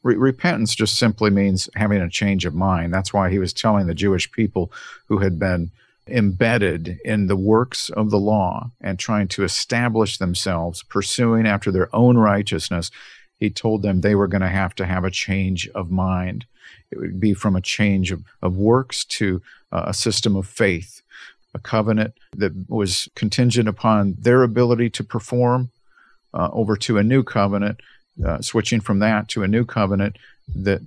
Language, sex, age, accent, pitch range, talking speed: English, male, 50-69, American, 95-120 Hz, 175 wpm